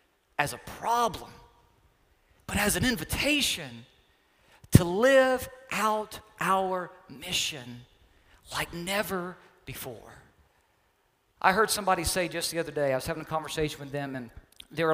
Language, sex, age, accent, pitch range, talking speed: English, male, 40-59, American, 130-175 Hz, 130 wpm